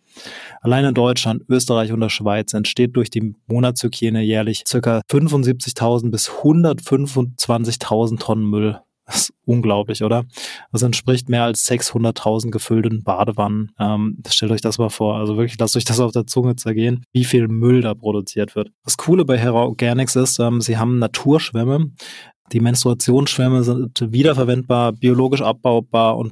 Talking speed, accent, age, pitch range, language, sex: 150 wpm, German, 20-39, 115-125 Hz, German, male